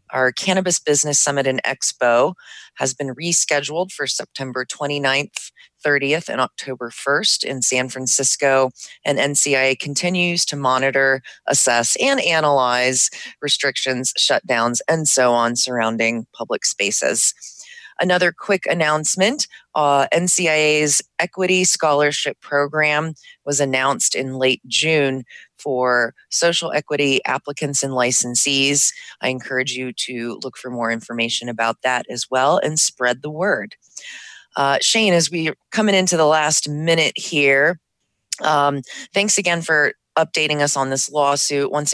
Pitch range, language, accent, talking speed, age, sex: 130-160 Hz, English, American, 130 wpm, 30-49, female